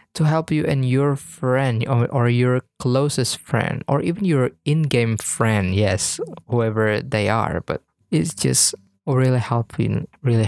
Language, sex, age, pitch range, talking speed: Indonesian, male, 20-39, 115-155 Hz, 150 wpm